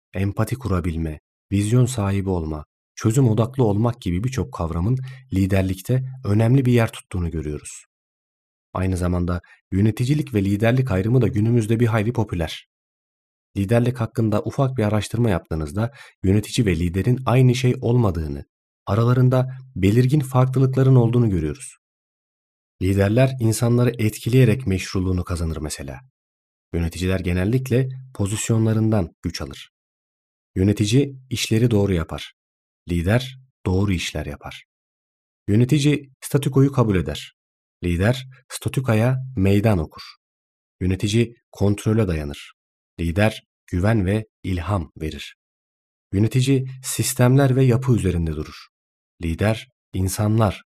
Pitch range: 85-120 Hz